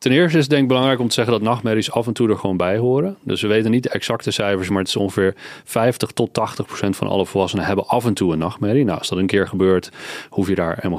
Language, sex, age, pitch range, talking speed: Dutch, male, 40-59, 95-125 Hz, 290 wpm